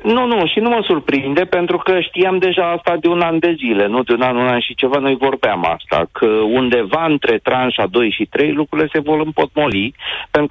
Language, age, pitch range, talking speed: Romanian, 40-59, 130-170 Hz, 225 wpm